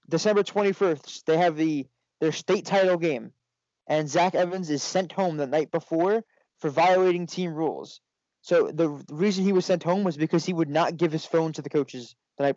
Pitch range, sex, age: 155-185 Hz, male, 20-39